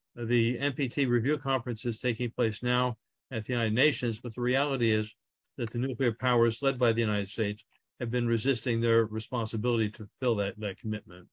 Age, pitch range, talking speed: 50-69, 115-135 Hz, 185 wpm